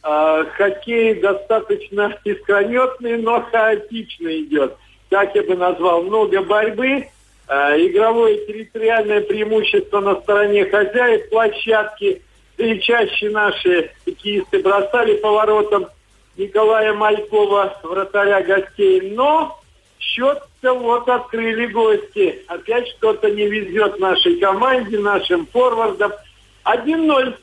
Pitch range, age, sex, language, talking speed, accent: 195-265 Hz, 50-69, male, Russian, 95 wpm, native